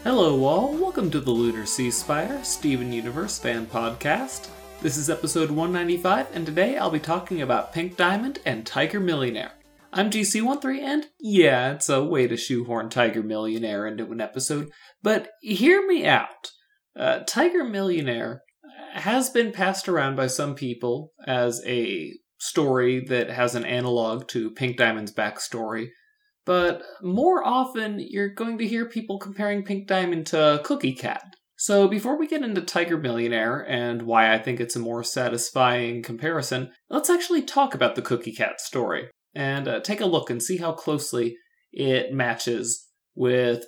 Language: English